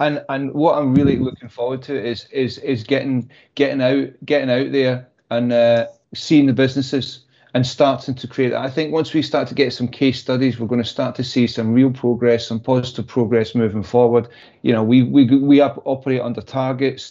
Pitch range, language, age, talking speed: 120-135 Hz, English, 30-49, 205 wpm